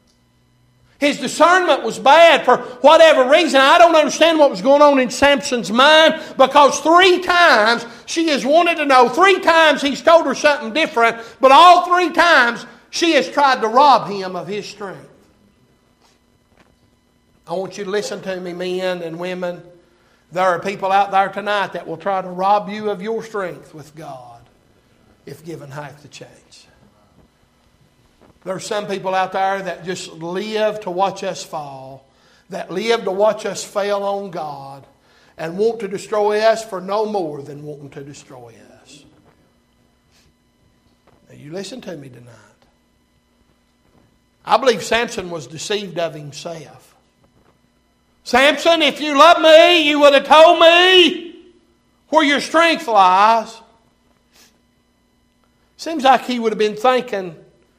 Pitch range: 175-280 Hz